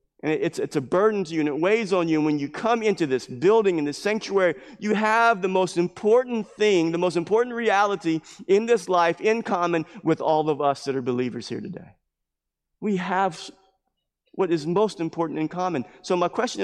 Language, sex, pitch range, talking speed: English, male, 160-200 Hz, 205 wpm